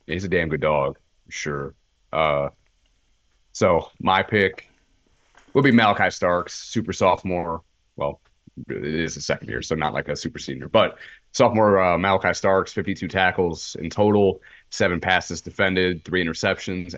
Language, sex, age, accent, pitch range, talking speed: English, male, 30-49, American, 80-90 Hz, 150 wpm